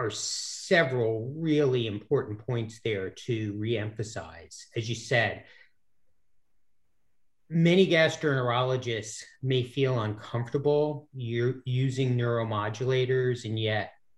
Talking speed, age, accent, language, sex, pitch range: 90 wpm, 40-59, American, English, male, 105-130 Hz